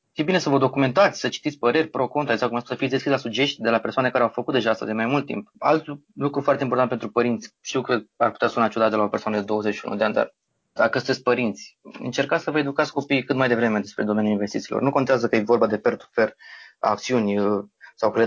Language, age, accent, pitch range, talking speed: Romanian, 20-39, native, 110-135 Hz, 245 wpm